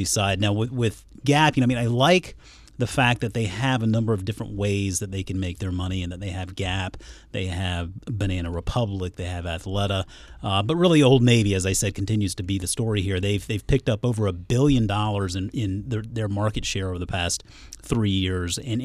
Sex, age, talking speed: male, 30-49, 225 wpm